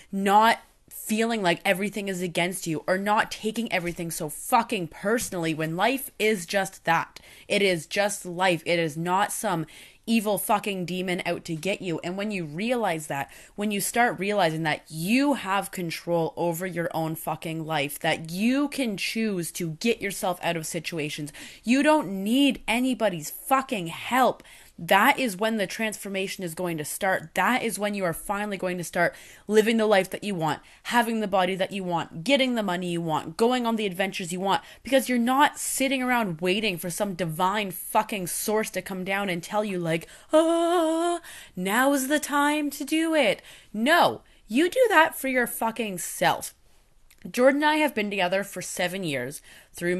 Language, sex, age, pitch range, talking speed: English, female, 20-39, 175-235 Hz, 185 wpm